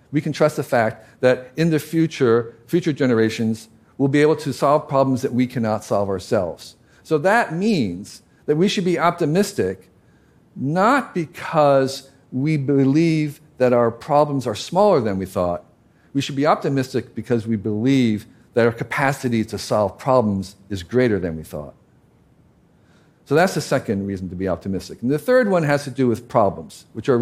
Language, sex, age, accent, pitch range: Korean, male, 50-69, American, 110-155 Hz